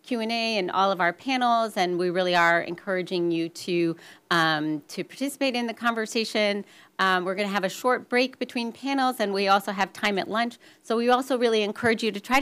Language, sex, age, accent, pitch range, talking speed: English, female, 40-59, American, 180-230 Hz, 210 wpm